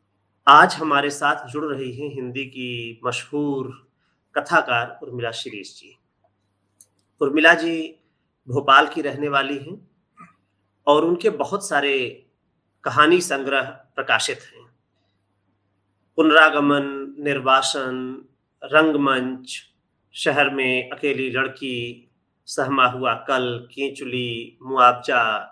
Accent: native